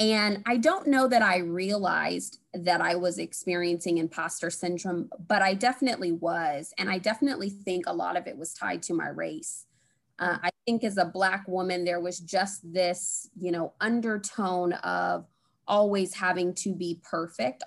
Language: English